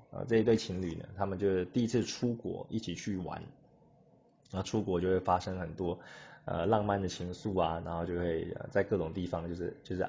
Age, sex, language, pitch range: 20-39, male, Chinese, 90-110 Hz